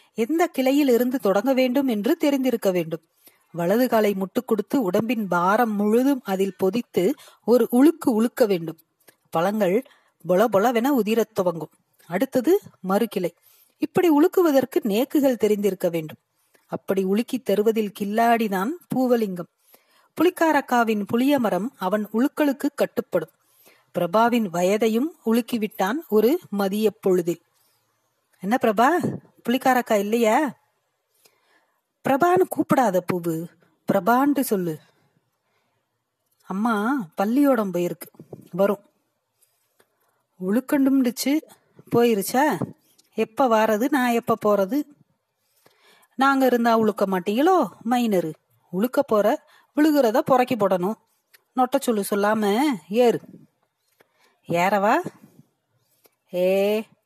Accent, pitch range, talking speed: native, 195-260 Hz, 85 wpm